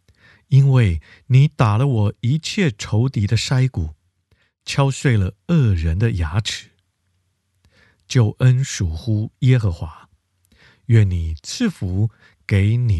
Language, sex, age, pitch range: Chinese, male, 50-69, 95-130 Hz